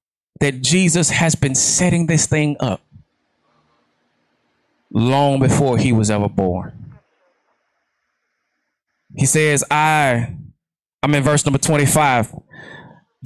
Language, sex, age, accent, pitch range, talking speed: English, male, 20-39, American, 130-165 Hz, 100 wpm